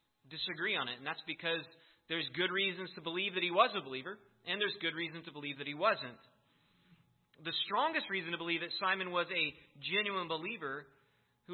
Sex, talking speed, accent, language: male, 190 wpm, American, English